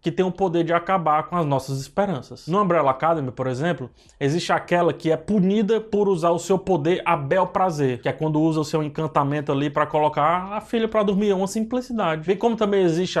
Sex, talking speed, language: male, 225 wpm, Portuguese